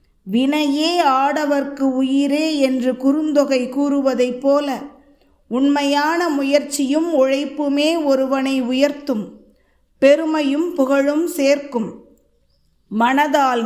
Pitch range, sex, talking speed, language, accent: 240-295 Hz, female, 70 wpm, Tamil, native